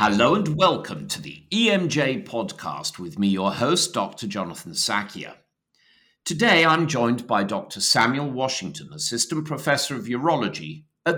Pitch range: 100-150 Hz